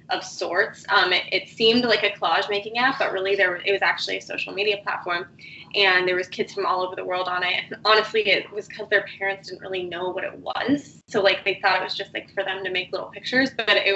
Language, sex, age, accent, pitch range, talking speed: English, female, 20-39, American, 190-275 Hz, 260 wpm